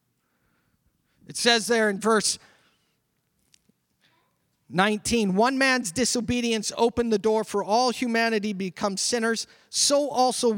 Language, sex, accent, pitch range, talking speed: English, male, American, 210-275 Hz, 110 wpm